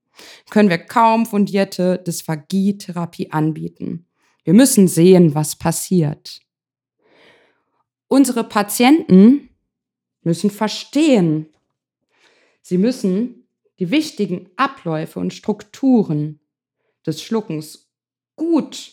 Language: German